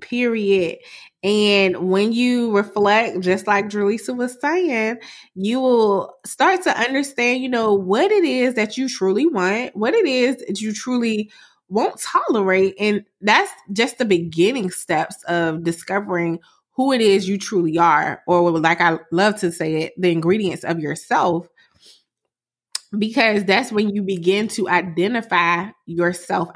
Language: English